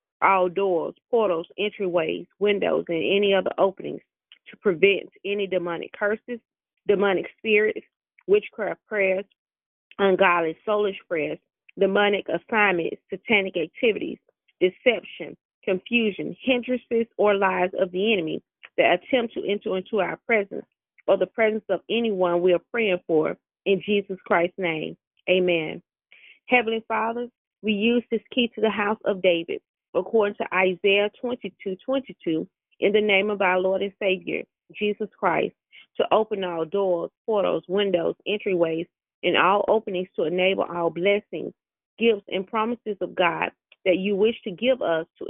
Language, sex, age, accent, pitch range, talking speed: English, female, 30-49, American, 185-220 Hz, 140 wpm